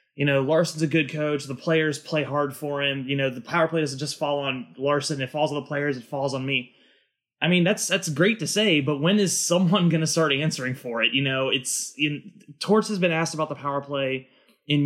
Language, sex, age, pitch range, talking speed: English, male, 20-39, 135-165 Hz, 245 wpm